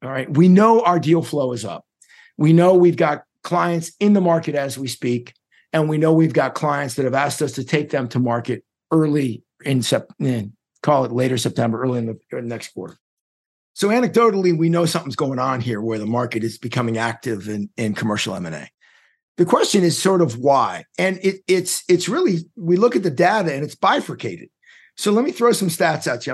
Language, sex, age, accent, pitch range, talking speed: English, male, 50-69, American, 130-185 Hz, 205 wpm